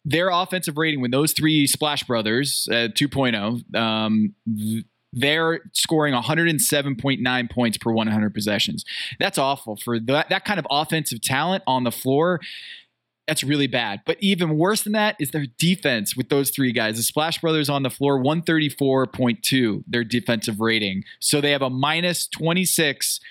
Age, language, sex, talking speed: 20-39, English, male, 155 wpm